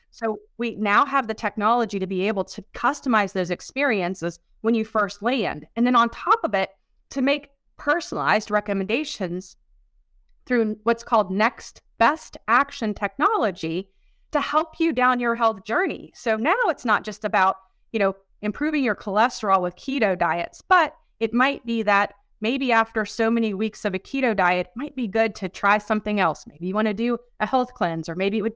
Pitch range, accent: 200-245 Hz, American